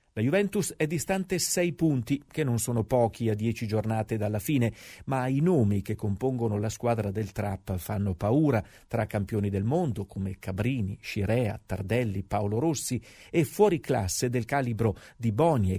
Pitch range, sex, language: 105-155 Hz, male, Italian